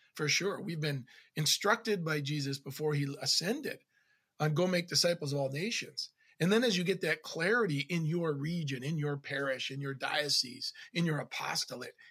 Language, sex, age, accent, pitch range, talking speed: English, male, 40-59, American, 145-195 Hz, 185 wpm